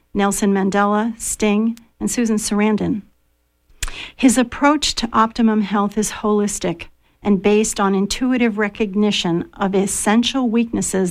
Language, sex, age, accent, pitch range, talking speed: English, female, 50-69, American, 200-235 Hz, 115 wpm